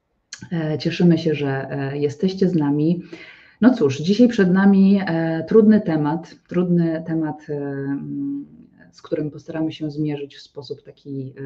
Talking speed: 120 wpm